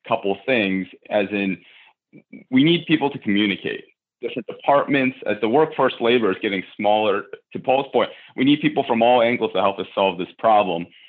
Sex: male